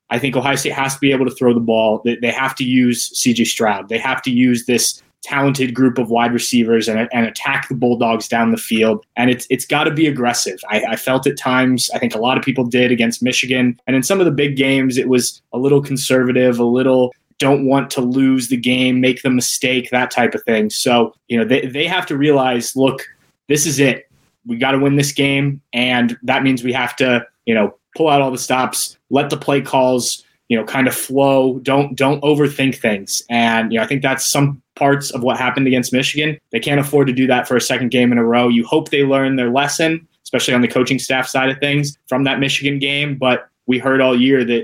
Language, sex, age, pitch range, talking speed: English, male, 20-39, 120-140 Hz, 240 wpm